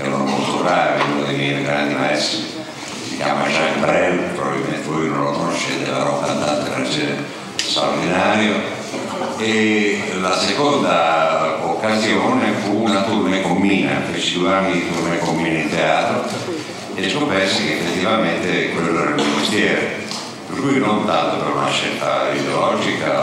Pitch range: 70-90 Hz